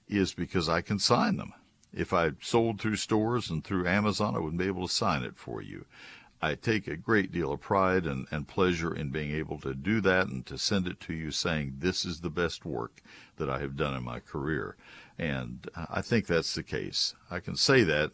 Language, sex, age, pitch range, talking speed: English, male, 60-79, 75-95 Hz, 225 wpm